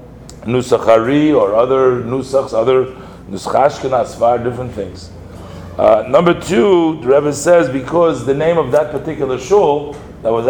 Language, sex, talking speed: English, male, 135 wpm